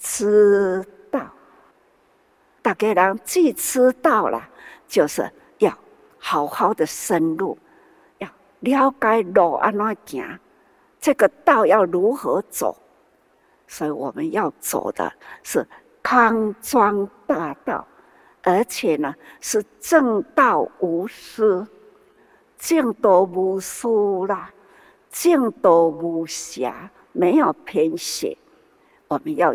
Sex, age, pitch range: female, 60-79, 200-335 Hz